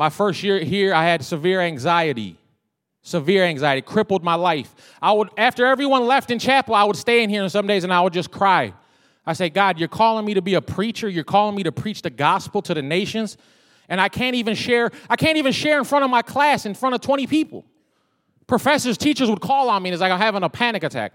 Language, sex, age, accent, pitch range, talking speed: English, male, 30-49, American, 170-235 Hz, 245 wpm